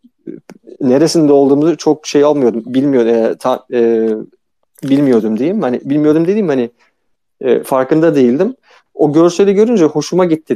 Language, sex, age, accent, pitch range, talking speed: Turkish, male, 40-59, native, 130-165 Hz, 130 wpm